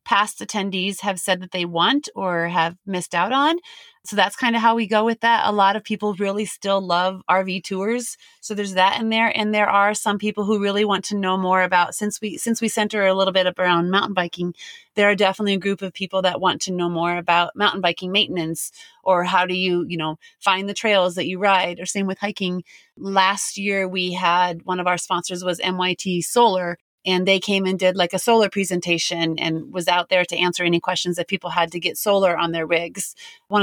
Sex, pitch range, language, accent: female, 180-205 Hz, English, American